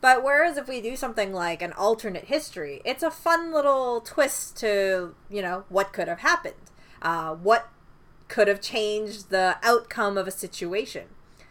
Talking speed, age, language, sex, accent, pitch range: 165 wpm, 20-39, English, female, American, 185-235 Hz